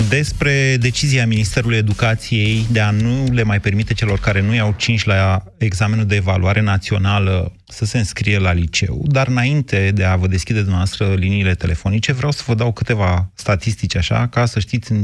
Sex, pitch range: male, 100-130 Hz